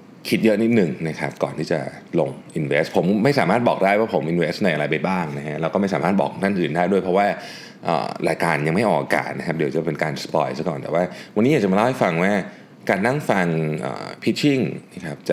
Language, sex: Thai, male